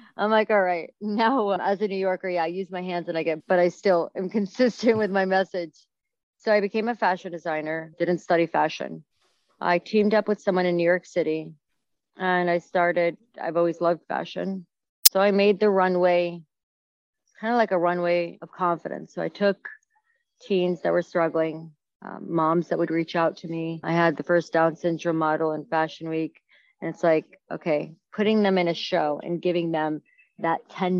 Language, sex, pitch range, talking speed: English, female, 165-195 Hz, 195 wpm